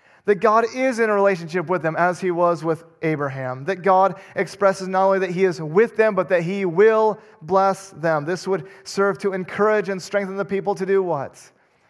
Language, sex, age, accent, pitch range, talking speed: English, male, 30-49, American, 135-190 Hz, 205 wpm